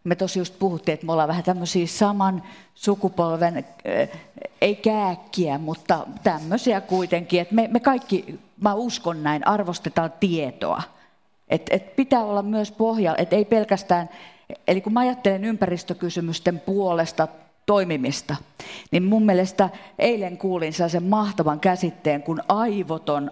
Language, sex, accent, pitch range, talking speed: Finnish, female, native, 165-205 Hz, 125 wpm